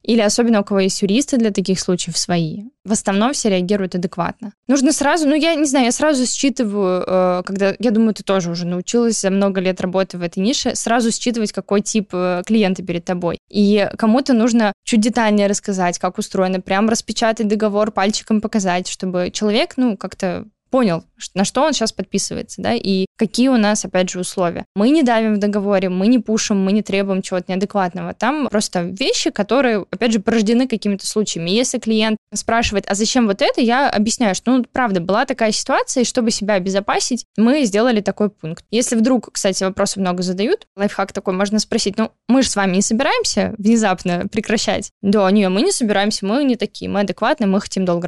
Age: 20-39